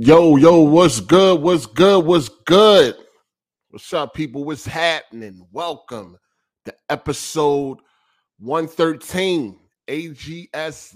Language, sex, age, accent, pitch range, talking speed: English, male, 30-49, American, 120-170 Hz, 115 wpm